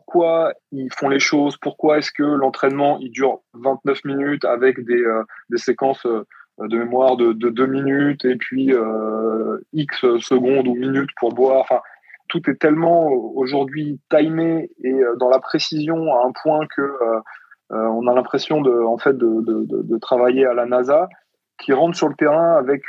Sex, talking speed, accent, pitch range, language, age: male, 175 wpm, French, 120-150 Hz, French, 20-39